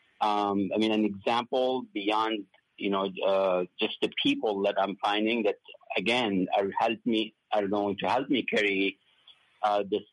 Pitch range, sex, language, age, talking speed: 100-115 Hz, male, English, 50-69, 165 wpm